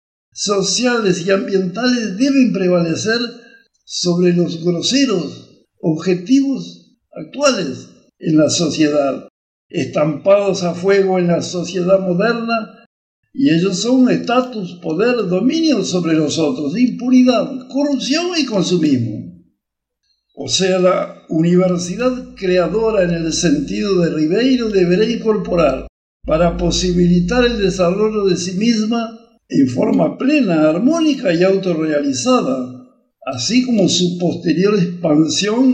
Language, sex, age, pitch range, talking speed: Spanish, male, 60-79, 180-250 Hz, 105 wpm